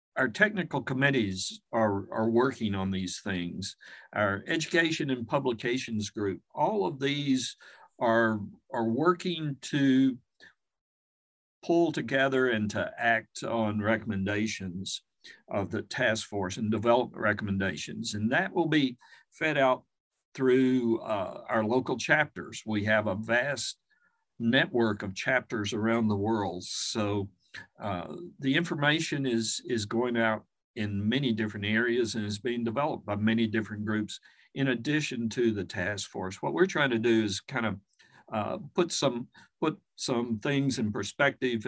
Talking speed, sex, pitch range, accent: 140 wpm, male, 105-135 Hz, American